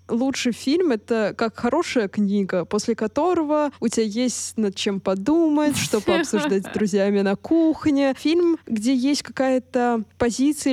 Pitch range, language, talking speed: 205-260 Hz, Russian, 145 wpm